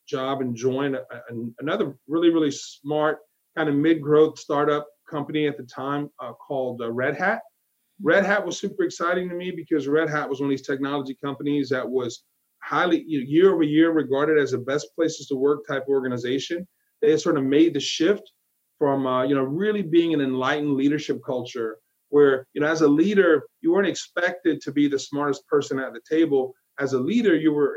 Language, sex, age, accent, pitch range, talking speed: English, male, 30-49, American, 135-165 Hz, 195 wpm